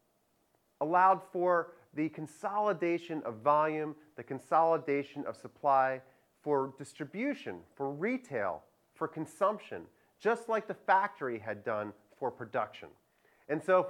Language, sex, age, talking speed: English, male, 30-49, 115 wpm